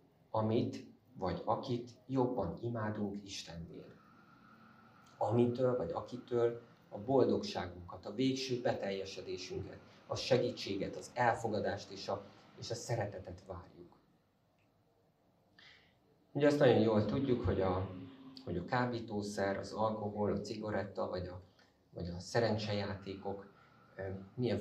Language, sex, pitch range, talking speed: Hungarian, male, 100-120 Hz, 105 wpm